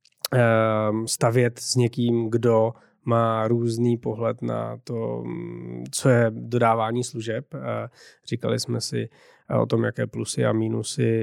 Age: 20-39